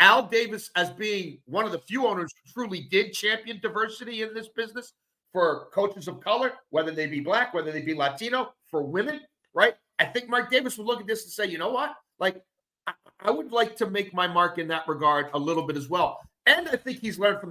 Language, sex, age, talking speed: English, male, 40-59, 235 wpm